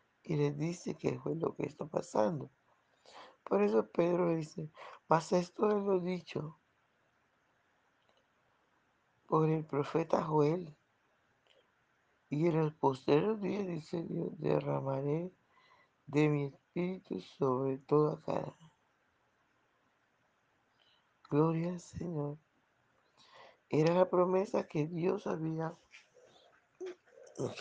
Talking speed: 100 wpm